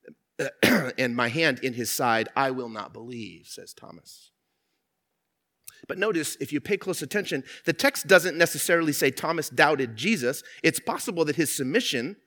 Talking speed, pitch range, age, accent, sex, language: 155 wpm, 130-185 Hz, 30-49, American, male, English